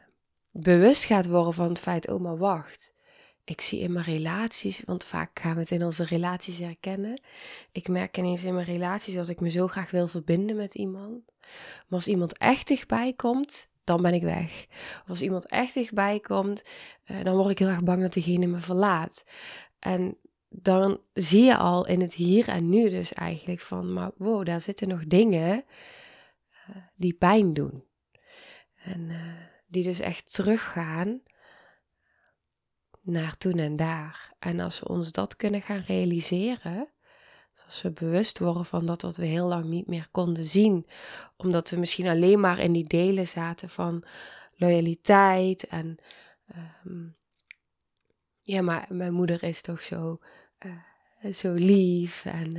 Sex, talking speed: female, 160 wpm